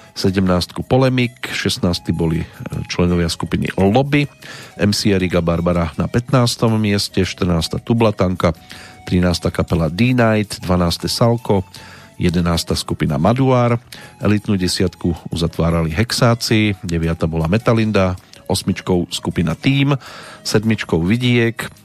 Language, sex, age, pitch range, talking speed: Slovak, male, 40-59, 85-110 Hz, 95 wpm